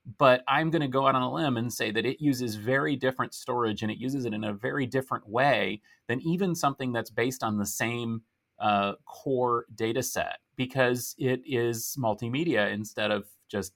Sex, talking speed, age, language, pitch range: male, 195 wpm, 30-49, English, 115-140 Hz